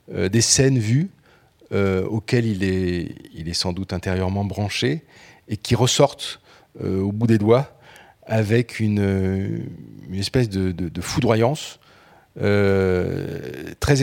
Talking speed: 135 wpm